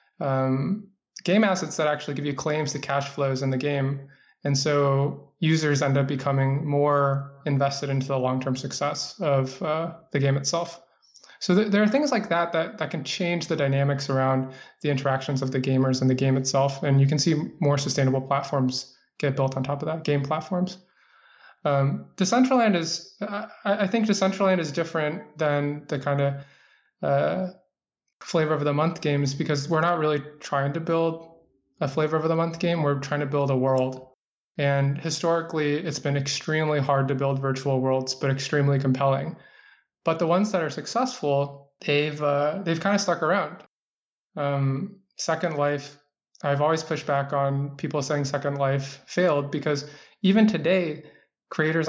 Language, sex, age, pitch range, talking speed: English, male, 20-39, 140-165 Hz, 165 wpm